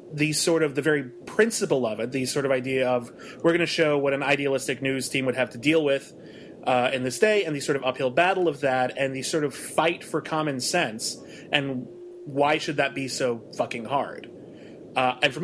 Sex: male